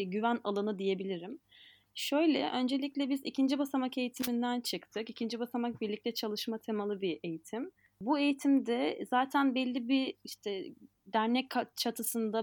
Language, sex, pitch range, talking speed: Turkish, female, 205-255 Hz, 120 wpm